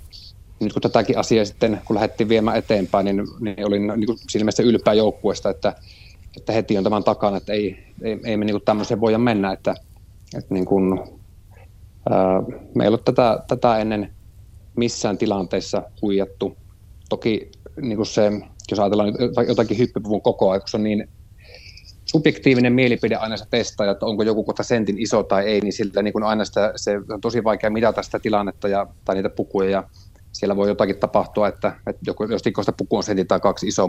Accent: native